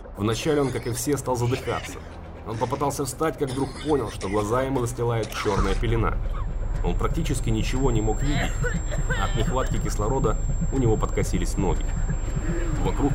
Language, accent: Russian, native